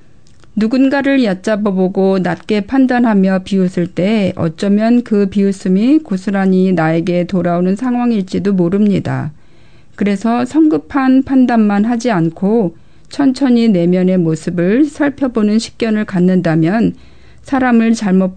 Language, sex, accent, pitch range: Korean, female, native, 180-225 Hz